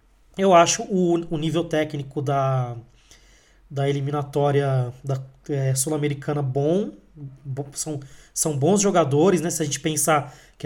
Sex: male